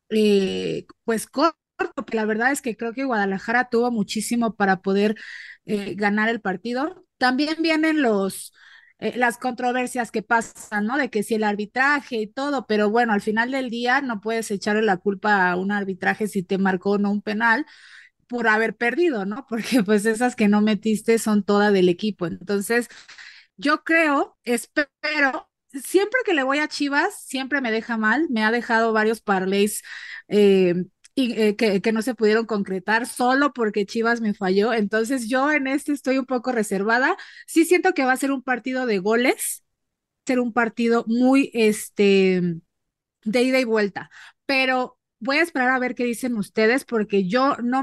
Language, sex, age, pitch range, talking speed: Spanish, female, 30-49, 210-260 Hz, 175 wpm